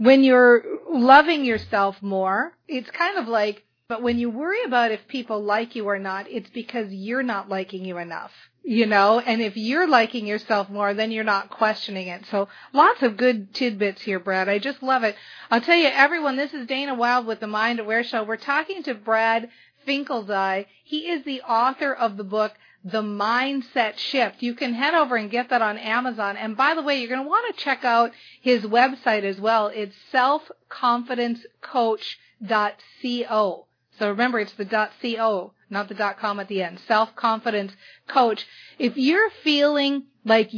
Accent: American